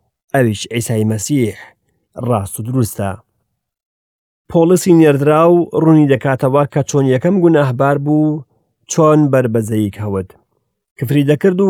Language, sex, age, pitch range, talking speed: English, male, 40-59, 115-155 Hz, 110 wpm